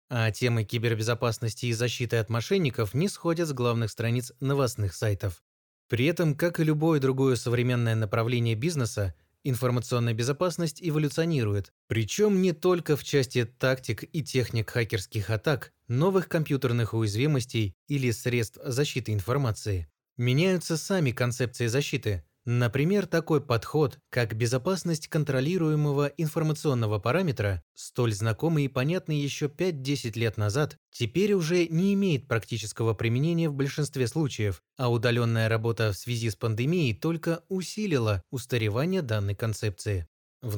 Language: Russian